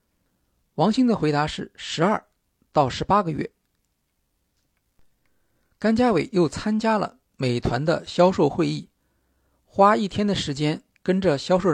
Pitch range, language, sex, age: 130-200 Hz, Chinese, male, 50-69